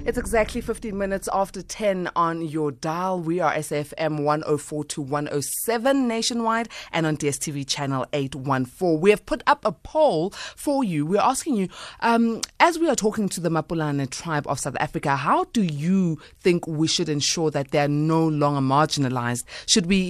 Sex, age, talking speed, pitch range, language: female, 20-39, 175 wpm, 145-195 Hz, English